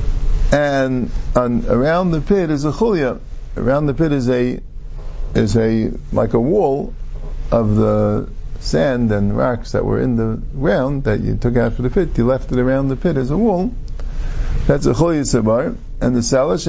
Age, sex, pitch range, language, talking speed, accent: 50-69, male, 115-150 Hz, English, 180 wpm, American